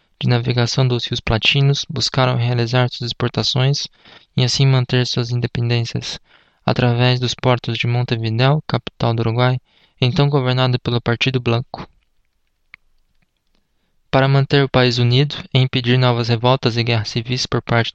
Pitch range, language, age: 115-130 Hz, Portuguese, 20-39